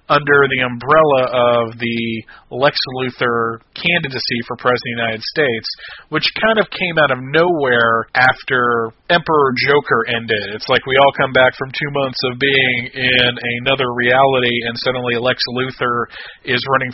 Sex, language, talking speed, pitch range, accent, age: male, English, 160 wpm, 125-150 Hz, American, 40-59